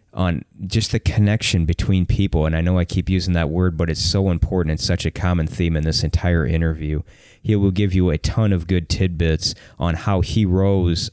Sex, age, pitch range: male, 20-39, 85-105 Hz